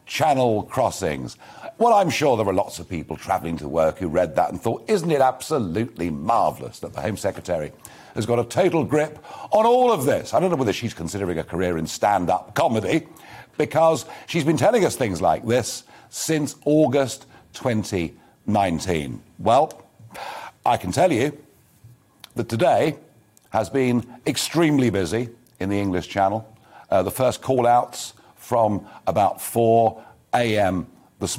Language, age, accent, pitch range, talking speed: English, 50-69, British, 110-150 Hz, 155 wpm